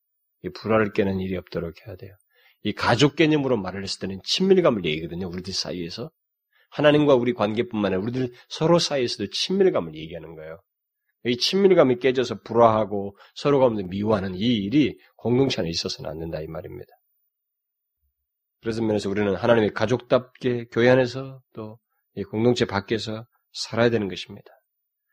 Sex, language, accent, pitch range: male, Korean, native, 105-145 Hz